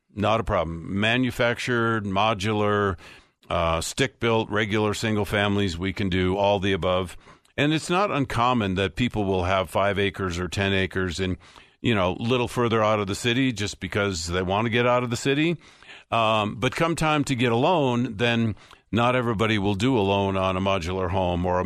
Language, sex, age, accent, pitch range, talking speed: English, male, 50-69, American, 95-115 Hz, 190 wpm